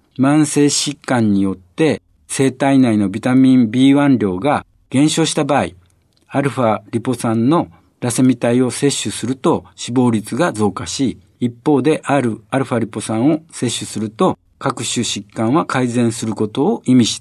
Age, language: 60-79, Japanese